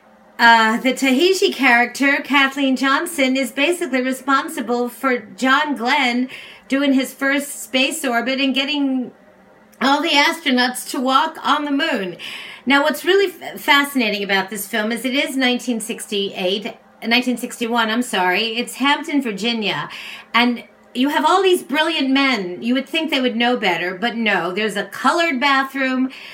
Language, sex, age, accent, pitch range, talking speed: English, female, 40-59, American, 215-275 Hz, 150 wpm